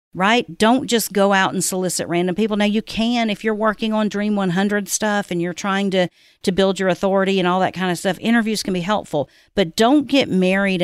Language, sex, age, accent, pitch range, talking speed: English, female, 40-59, American, 165-205 Hz, 225 wpm